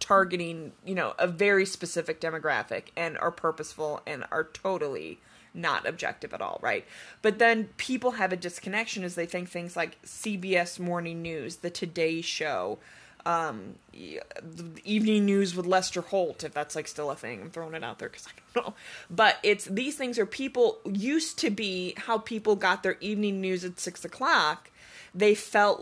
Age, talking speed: 20-39, 180 wpm